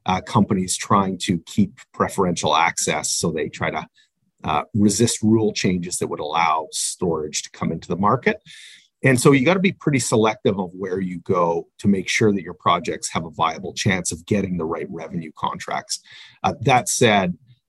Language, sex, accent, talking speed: English, male, American, 185 wpm